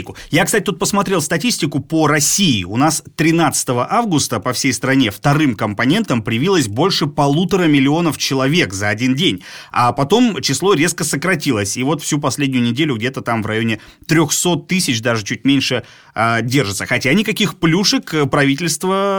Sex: male